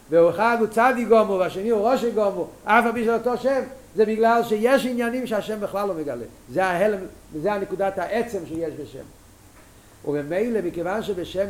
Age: 50-69